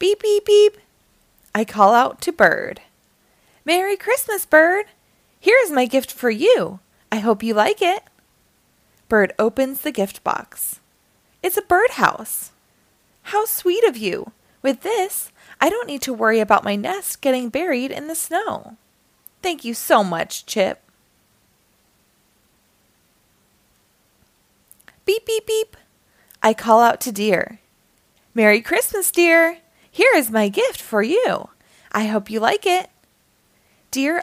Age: 20-39